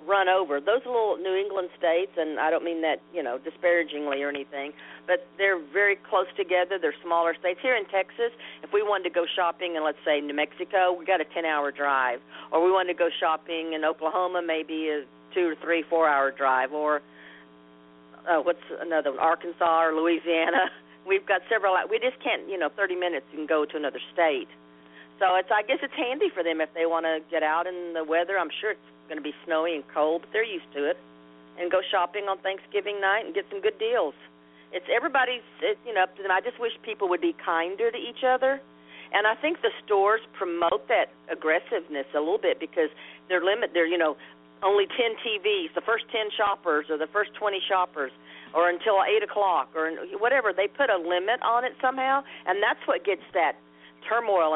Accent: American